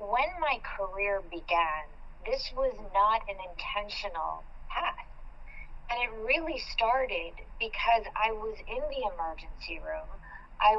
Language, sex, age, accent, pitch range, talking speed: English, female, 50-69, American, 200-285 Hz, 120 wpm